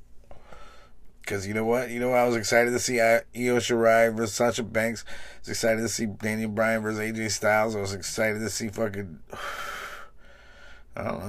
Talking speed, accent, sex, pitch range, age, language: 185 wpm, American, male, 95-115 Hz, 30-49, English